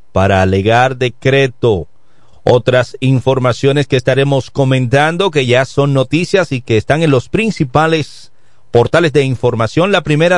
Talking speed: 135 wpm